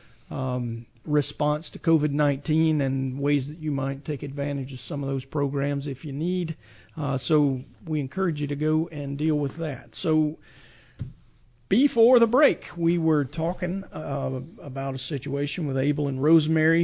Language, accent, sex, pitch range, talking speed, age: English, American, male, 140-165 Hz, 160 wpm, 40-59